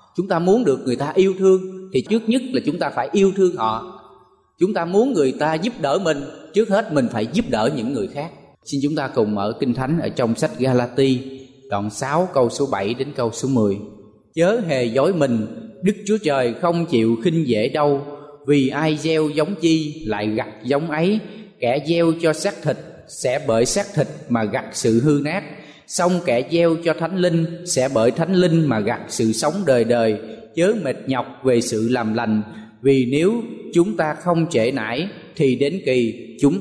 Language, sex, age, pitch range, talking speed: Vietnamese, male, 20-39, 120-180 Hz, 205 wpm